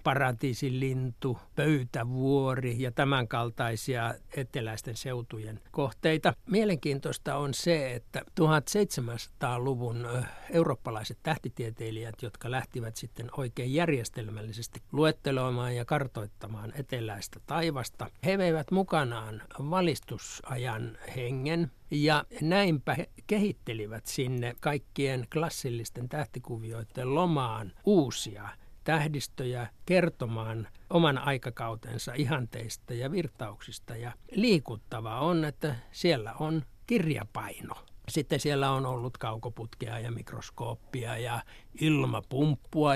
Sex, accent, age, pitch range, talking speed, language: male, native, 60-79, 115-145 Hz, 85 wpm, Finnish